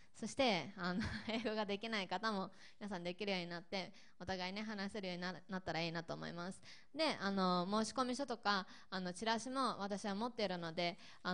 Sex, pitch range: female, 180-220 Hz